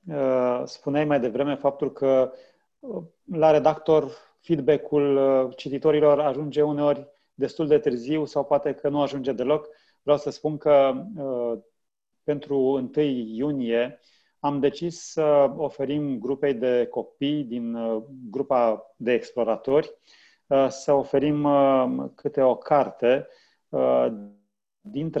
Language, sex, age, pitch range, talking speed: Romanian, male, 30-49, 125-150 Hz, 105 wpm